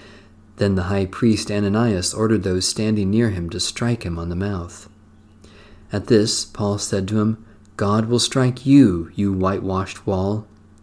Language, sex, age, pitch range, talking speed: English, male, 40-59, 100-115 Hz, 160 wpm